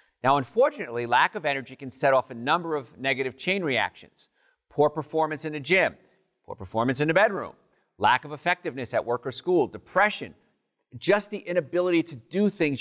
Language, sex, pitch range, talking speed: English, male, 115-150 Hz, 180 wpm